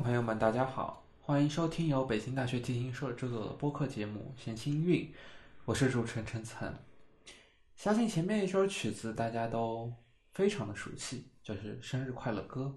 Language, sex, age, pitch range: Chinese, male, 20-39, 120-155 Hz